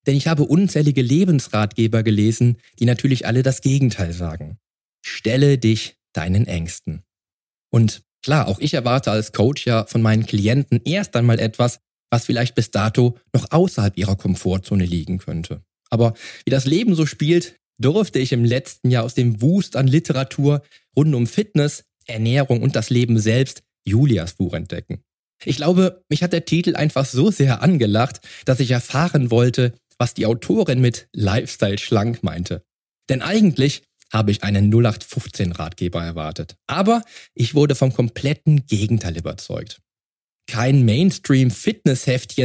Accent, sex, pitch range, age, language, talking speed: German, male, 105-145 Hz, 20-39, German, 150 wpm